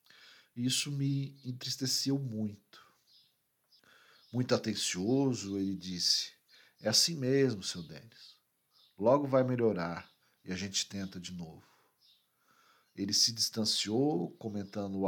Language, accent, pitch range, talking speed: Portuguese, Brazilian, 100-135 Hz, 105 wpm